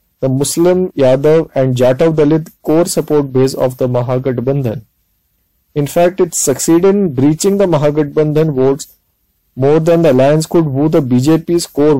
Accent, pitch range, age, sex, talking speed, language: Indian, 130-160 Hz, 20-39, male, 150 wpm, English